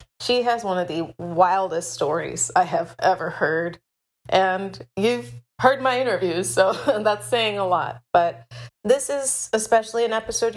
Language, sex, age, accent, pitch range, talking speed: English, female, 30-49, American, 170-195 Hz, 155 wpm